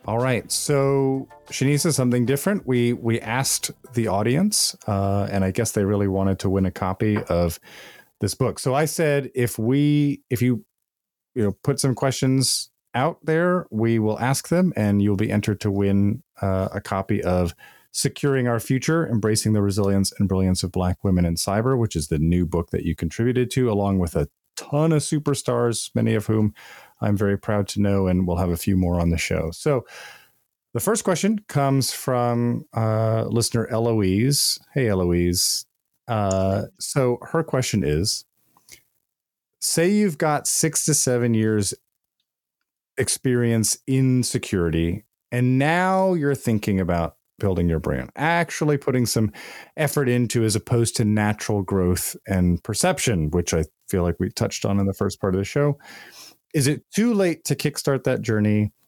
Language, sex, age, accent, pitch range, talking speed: English, male, 30-49, American, 95-135 Hz, 170 wpm